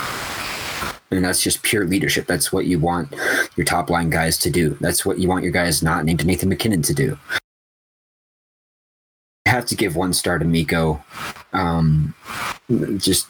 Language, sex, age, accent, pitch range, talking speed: English, male, 30-49, American, 80-90 Hz, 165 wpm